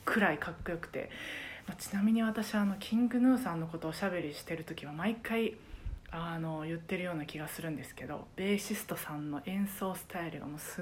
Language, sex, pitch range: Japanese, female, 165-245 Hz